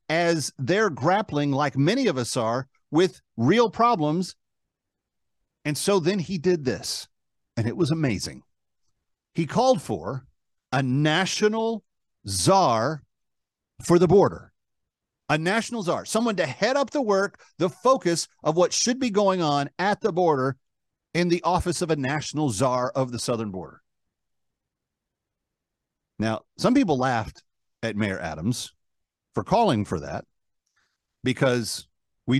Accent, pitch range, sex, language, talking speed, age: American, 130-195 Hz, male, English, 135 wpm, 50-69